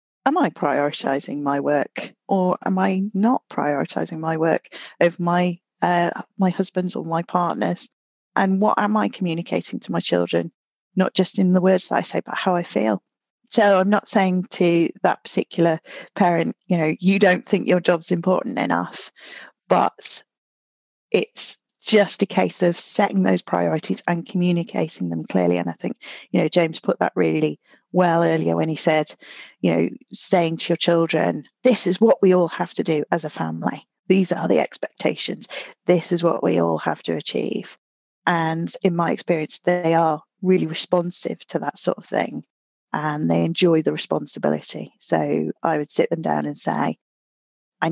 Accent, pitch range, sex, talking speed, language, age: British, 155-185 Hz, female, 175 wpm, English, 40-59